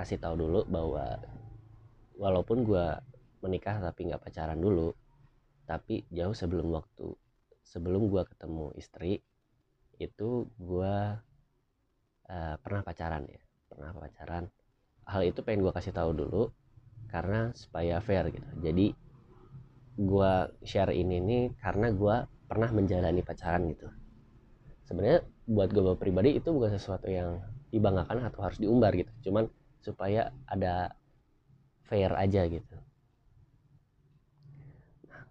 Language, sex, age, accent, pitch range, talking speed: Indonesian, male, 20-39, native, 90-120 Hz, 115 wpm